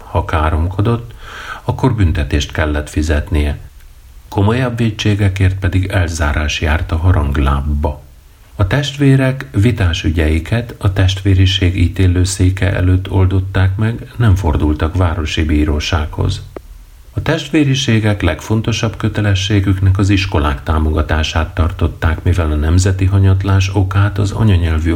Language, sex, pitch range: Hungarian, male, 80-100 Hz